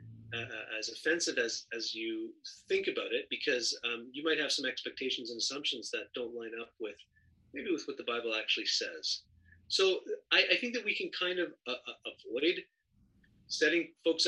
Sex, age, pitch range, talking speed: male, 30-49, 125-165 Hz, 185 wpm